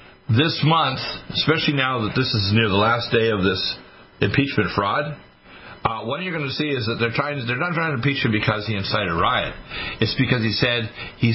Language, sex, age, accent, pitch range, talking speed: English, male, 60-79, American, 105-140 Hz, 215 wpm